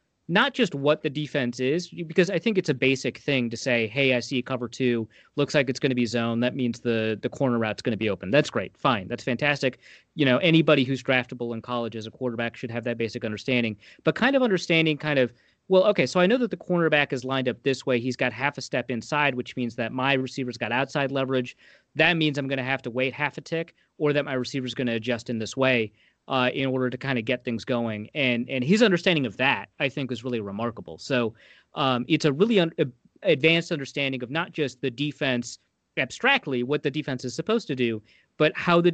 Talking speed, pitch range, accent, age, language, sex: 240 wpm, 120-150 Hz, American, 30-49, English, male